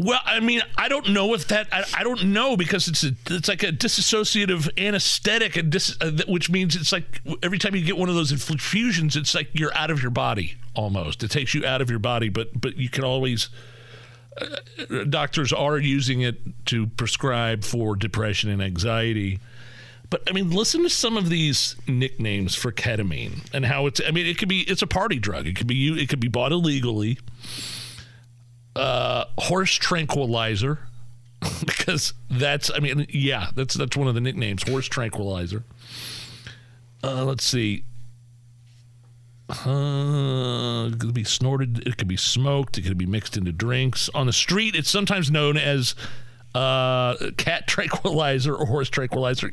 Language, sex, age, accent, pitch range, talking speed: English, male, 40-59, American, 120-165 Hz, 175 wpm